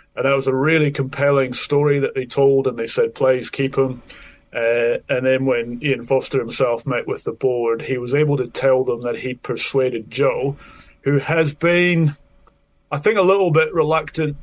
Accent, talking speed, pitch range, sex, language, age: British, 190 wpm, 130-160 Hz, male, English, 30-49